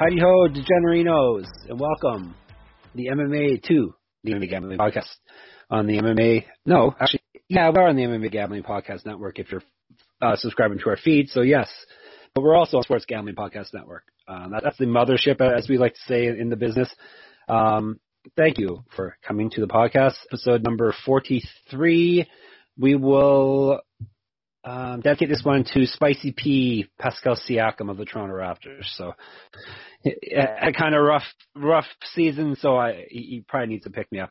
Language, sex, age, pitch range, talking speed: English, male, 30-49, 110-135 Hz, 175 wpm